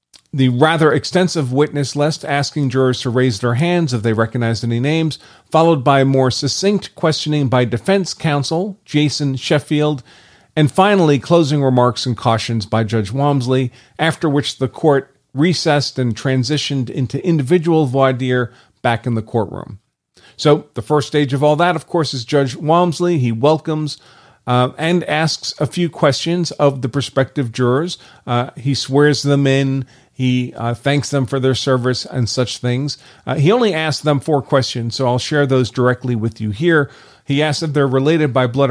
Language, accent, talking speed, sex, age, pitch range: English, American, 170 wpm, male, 40-59, 130-160 Hz